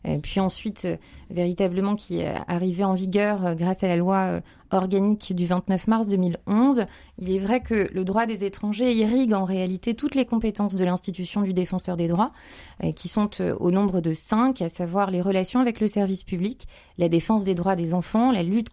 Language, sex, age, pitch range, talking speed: French, female, 30-49, 185-220 Hz, 190 wpm